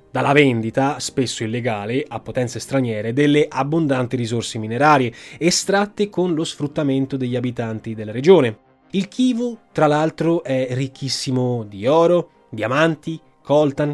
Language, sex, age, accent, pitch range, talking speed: Italian, male, 20-39, native, 125-160 Hz, 125 wpm